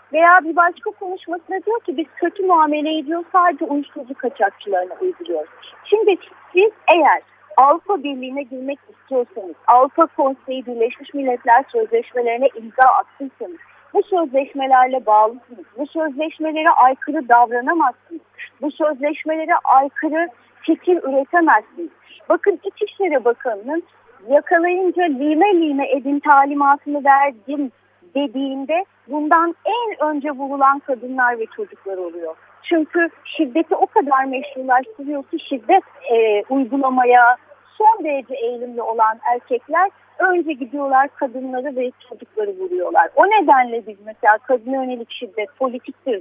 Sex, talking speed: female, 110 wpm